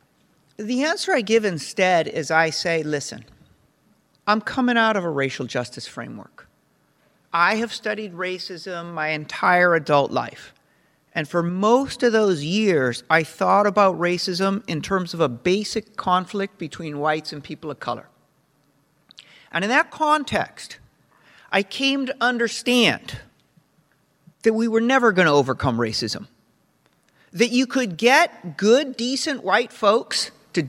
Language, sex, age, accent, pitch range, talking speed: English, male, 50-69, American, 175-260 Hz, 140 wpm